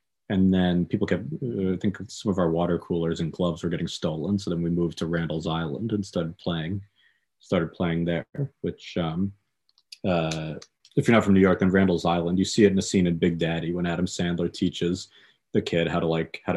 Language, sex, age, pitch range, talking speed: English, male, 30-49, 85-100 Hz, 215 wpm